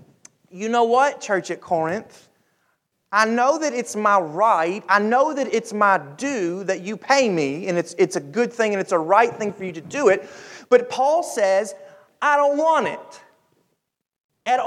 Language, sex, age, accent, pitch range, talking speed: English, male, 30-49, American, 215-275 Hz, 190 wpm